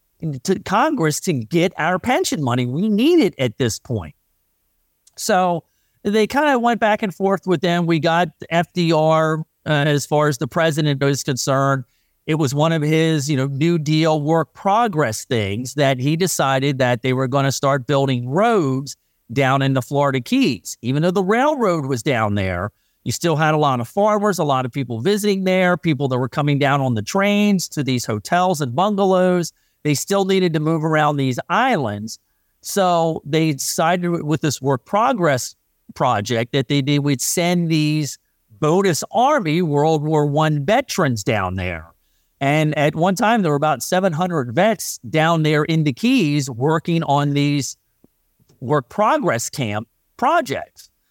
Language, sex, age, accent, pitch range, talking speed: English, male, 40-59, American, 135-180 Hz, 170 wpm